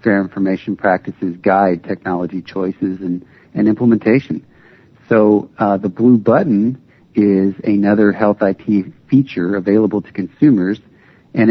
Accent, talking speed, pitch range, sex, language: American, 120 wpm, 95-105 Hz, male, English